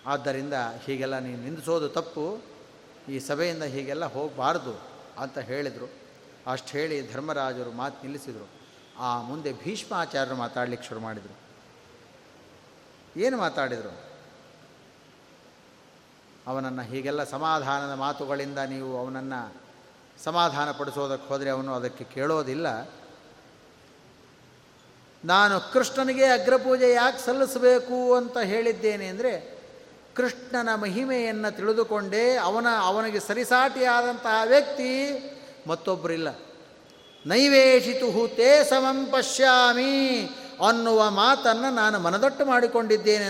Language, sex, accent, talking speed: Kannada, male, native, 80 wpm